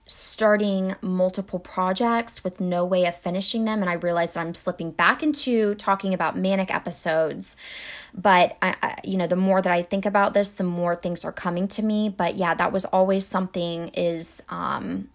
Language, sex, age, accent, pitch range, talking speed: English, female, 20-39, American, 180-215 Hz, 190 wpm